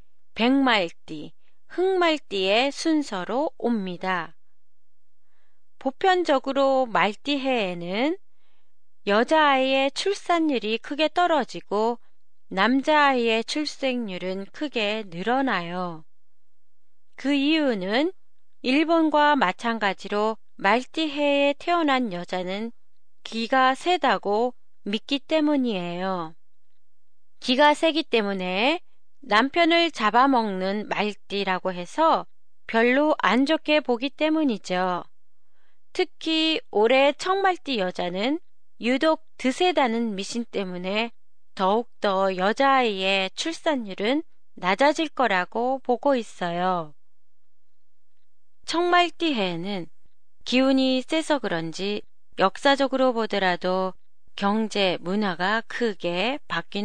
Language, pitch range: Japanese, 195-295 Hz